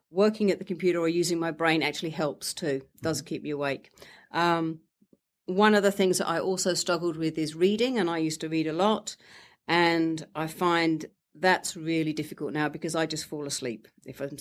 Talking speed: 200 wpm